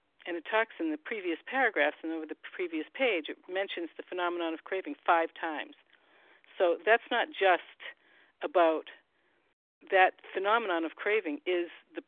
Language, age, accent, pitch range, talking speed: English, 50-69, American, 155-185 Hz, 155 wpm